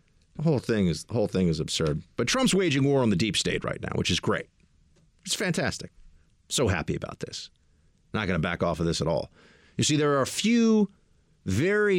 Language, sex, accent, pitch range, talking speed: English, male, American, 100-145 Hz, 220 wpm